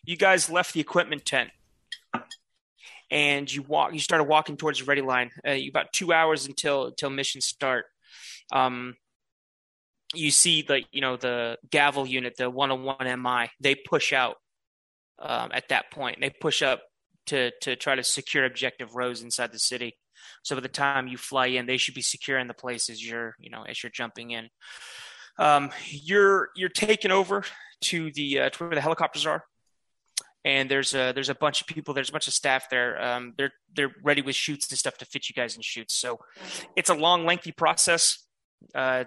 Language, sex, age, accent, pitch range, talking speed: English, male, 30-49, American, 125-155 Hz, 195 wpm